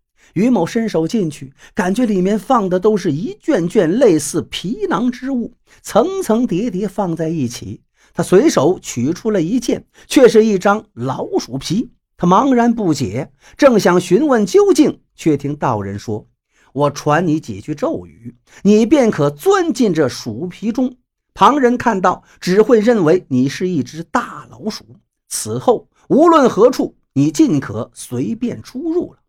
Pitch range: 150-250 Hz